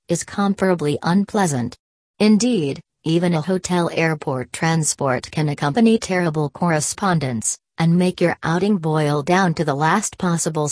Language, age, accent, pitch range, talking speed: English, 40-59, American, 145-180 Hz, 130 wpm